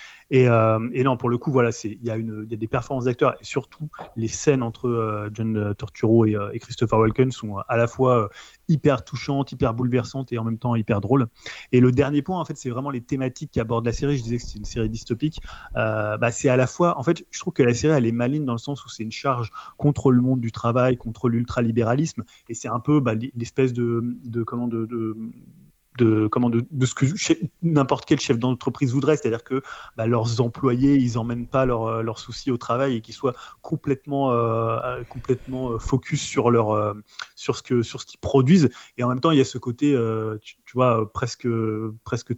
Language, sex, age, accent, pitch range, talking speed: French, male, 30-49, French, 115-135 Hz, 230 wpm